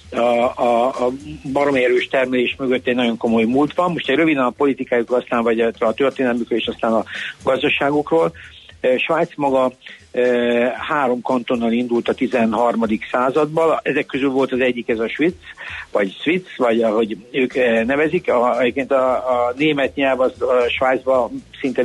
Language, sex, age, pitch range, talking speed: Hungarian, male, 60-79, 115-135 Hz, 160 wpm